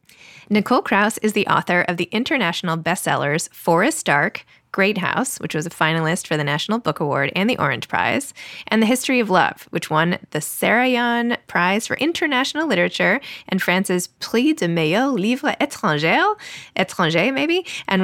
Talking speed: 165 wpm